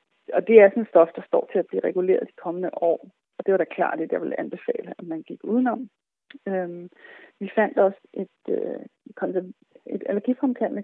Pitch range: 180-240 Hz